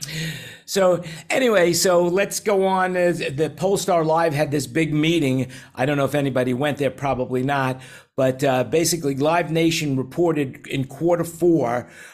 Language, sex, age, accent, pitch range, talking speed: English, male, 50-69, American, 130-165 Hz, 155 wpm